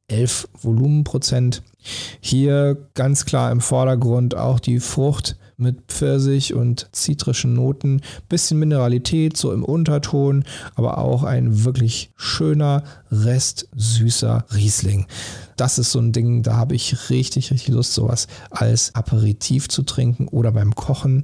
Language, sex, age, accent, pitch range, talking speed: German, male, 40-59, German, 115-135 Hz, 135 wpm